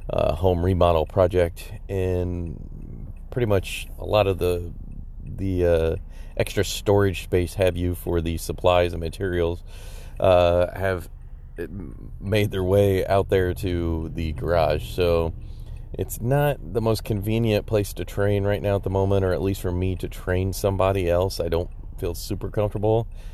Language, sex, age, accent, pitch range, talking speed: English, male, 30-49, American, 85-110 Hz, 155 wpm